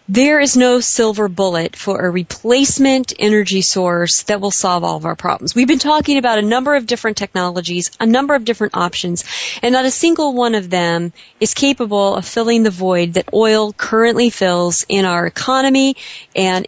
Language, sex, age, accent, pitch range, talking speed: English, female, 40-59, American, 190-235 Hz, 185 wpm